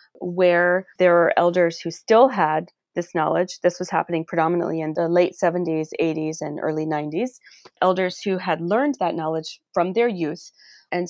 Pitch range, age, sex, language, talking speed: 160-195 Hz, 30-49, female, English, 170 wpm